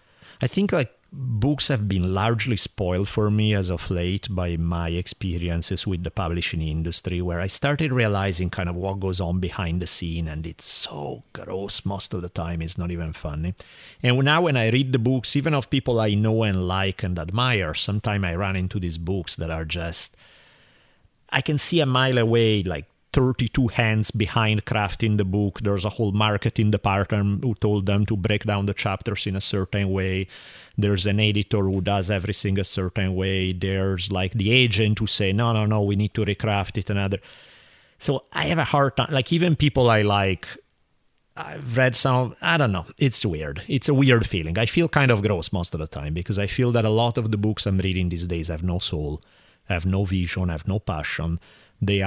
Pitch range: 90-115 Hz